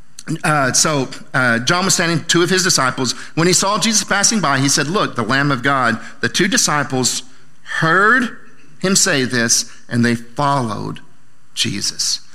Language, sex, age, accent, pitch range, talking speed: English, male, 50-69, American, 130-180 Hz, 165 wpm